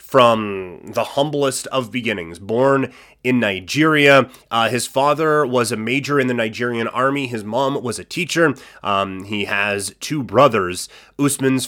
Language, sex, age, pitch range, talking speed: English, male, 30-49, 115-140 Hz, 150 wpm